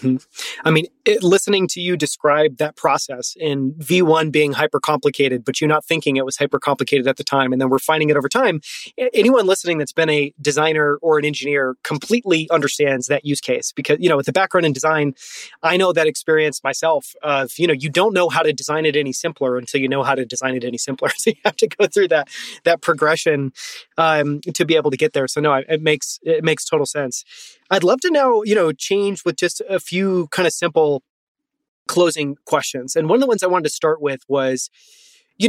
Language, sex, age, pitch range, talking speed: English, male, 30-49, 140-175 Hz, 225 wpm